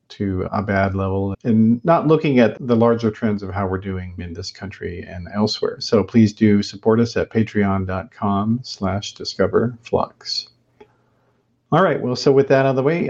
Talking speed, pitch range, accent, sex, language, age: 180 wpm, 105-130 Hz, American, male, English, 50-69